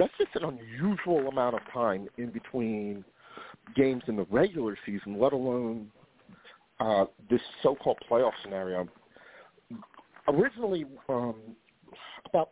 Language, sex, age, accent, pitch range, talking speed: English, male, 50-69, American, 115-140 Hz, 120 wpm